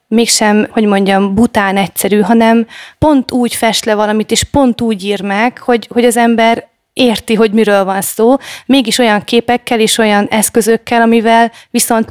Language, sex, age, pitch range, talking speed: Hungarian, female, 30-49, 205-235 Hz, 165 wpm